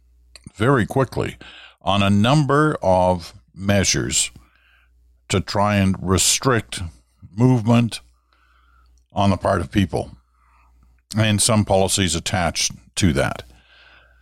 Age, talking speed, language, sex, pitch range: 50-69, 95 wpm, English, male, 80-105 Hz